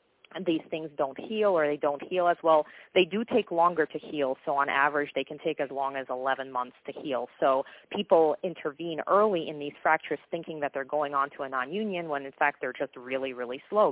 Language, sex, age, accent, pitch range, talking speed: English, female, 30-49, American, 135-170 Hz, 230 wpm